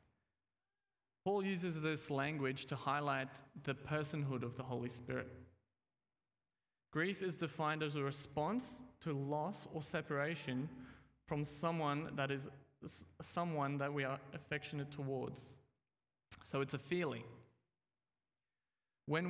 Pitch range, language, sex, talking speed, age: 135-160 Hz, English, male, 115 wpm, 20-39